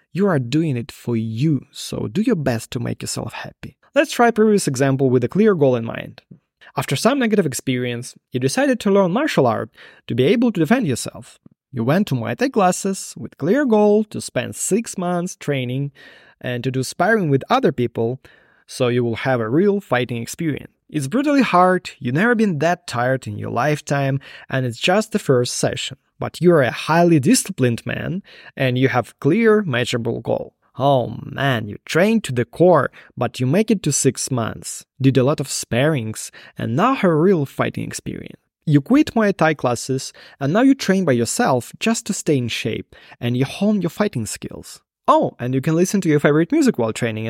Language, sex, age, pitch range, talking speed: English, male, 20-39, 125-205 Hz, 200 wpm